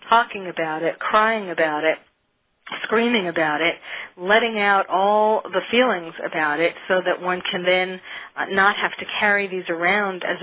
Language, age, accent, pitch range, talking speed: English, 40-59, American, 175-215 Hz, 160 wpm